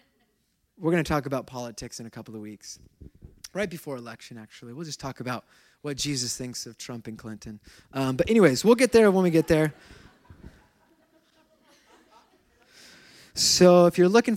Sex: male